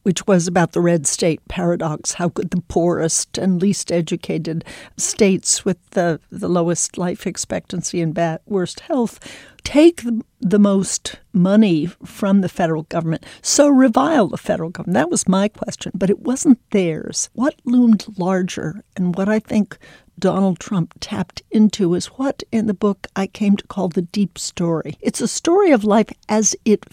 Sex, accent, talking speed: female, American, 165 wpm